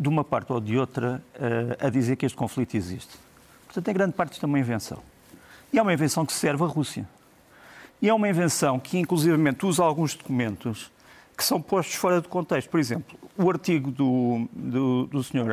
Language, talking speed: Portuguese, 195 wpm